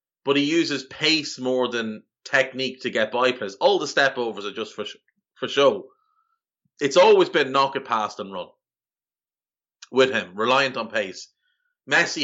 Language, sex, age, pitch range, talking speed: English, male, 30-49, 110-150 Hz, 160 wpm